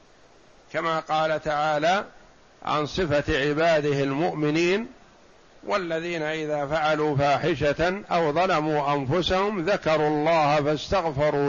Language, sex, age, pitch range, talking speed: Arabic, male, 60-79, 145-170 Hz, 90 wpm